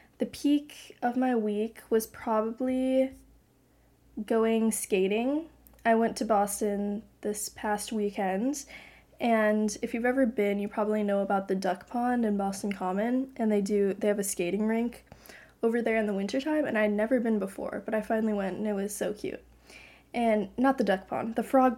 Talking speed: 180 wpm